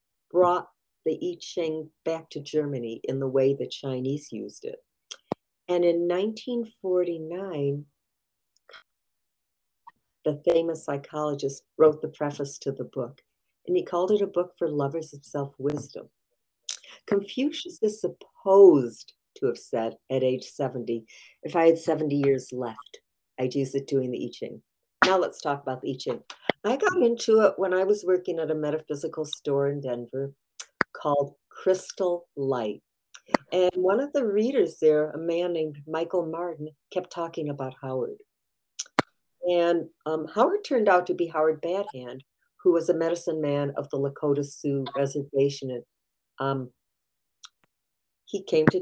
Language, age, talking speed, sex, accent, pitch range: English, 50-69, 150 wpm, female, American, 140-180 Hz